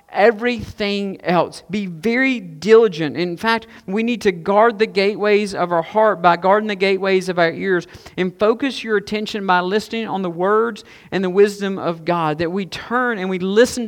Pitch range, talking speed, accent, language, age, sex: 175-215 Hz, 185 wpm, American, English, 50-69, male